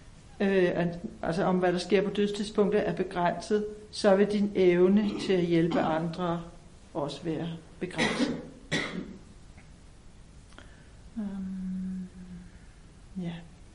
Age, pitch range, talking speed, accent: 60-79, 170-220 Hz, 95 wpm, native